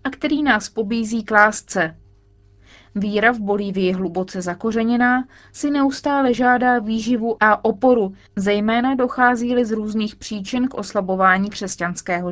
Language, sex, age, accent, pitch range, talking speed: Czech, female, 20-39, native, 195-250 Hz, 125 wpm